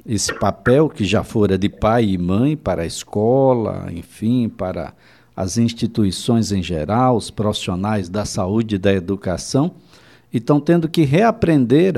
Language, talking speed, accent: Portuguese, 150 wpm, Brazilian